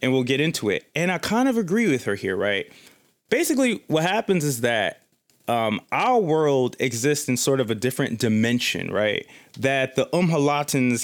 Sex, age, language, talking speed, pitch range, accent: male, 30-49, English, 180 wpm, 115-155 Hz, American